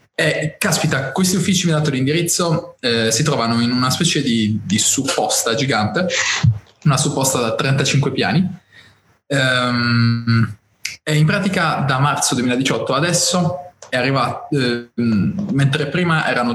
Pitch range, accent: 115-150 Hz, native